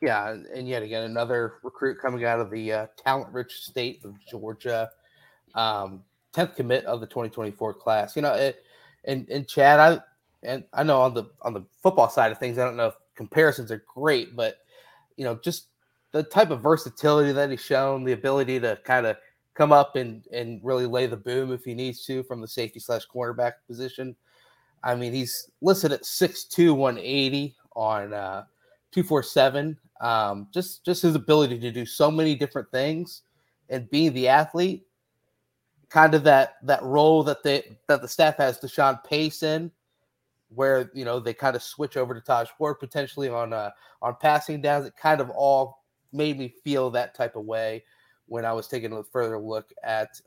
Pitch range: 120-145 Hz